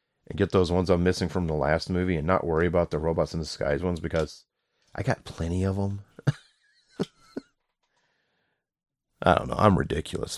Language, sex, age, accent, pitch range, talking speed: English, male, 30-49, American, 85-100 Hz, 180 wpm